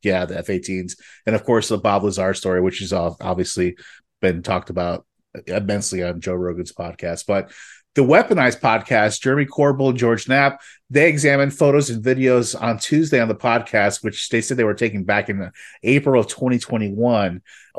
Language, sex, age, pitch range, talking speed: English, male, 30-49, 100-125 Hz, 170 wpm